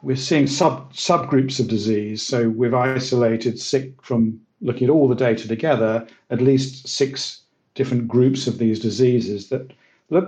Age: 50-69